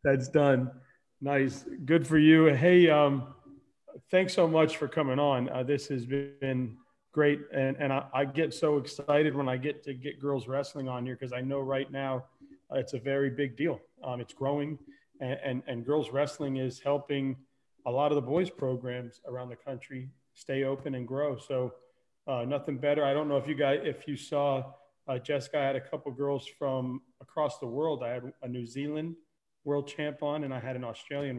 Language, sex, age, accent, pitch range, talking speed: English, male, 40-59, American, 130-145 Hz, 205 wpm